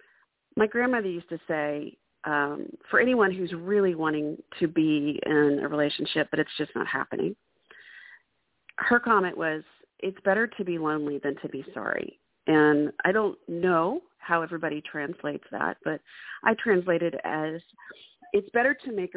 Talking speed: 155 wpm